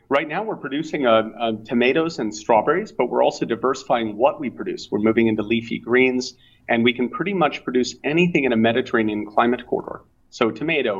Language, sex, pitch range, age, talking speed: English, male, 110-130 Hz, 30-49, 190 wpm